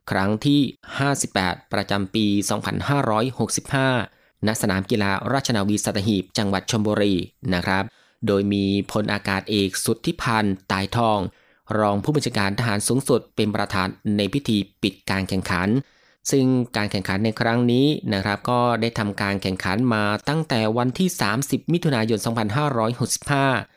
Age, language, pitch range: 20-39, Thai, 100-130 Hz